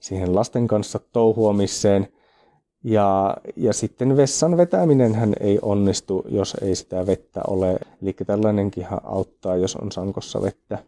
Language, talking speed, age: Finnish, 125 wpm, 30-49